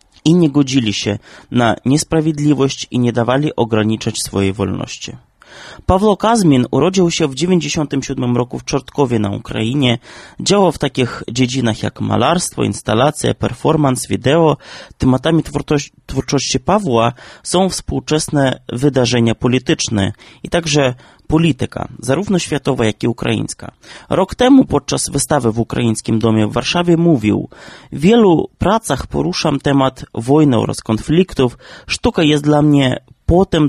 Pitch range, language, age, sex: 120-155 Hz, Polish, 30-49, male